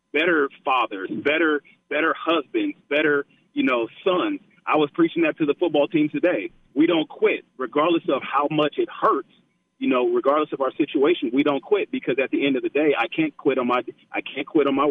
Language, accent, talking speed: English, American, 215 wpm